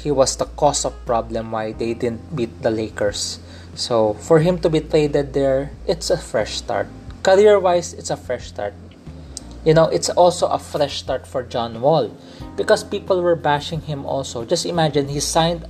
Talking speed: 185 wpm